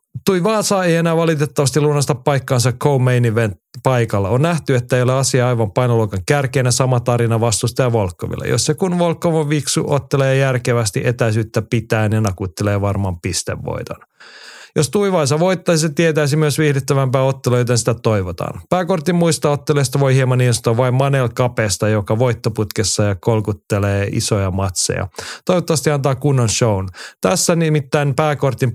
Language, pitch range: Finnish, 115-145 Hz